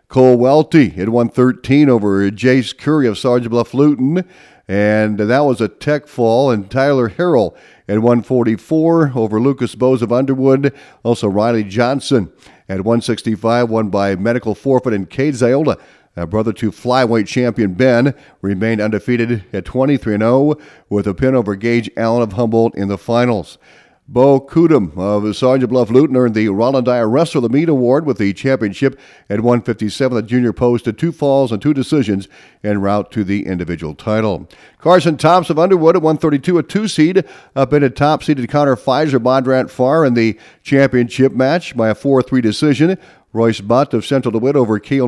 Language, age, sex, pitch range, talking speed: English, 50-69, male, 110-135 Hz, 165 wpm